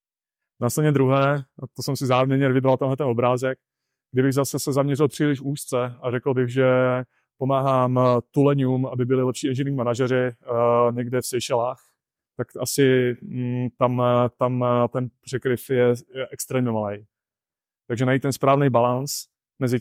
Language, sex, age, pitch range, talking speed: English, male, 20-39, 120-135 Hz, 140 wpm